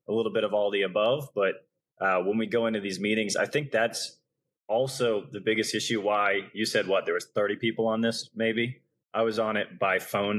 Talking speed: 230 wpm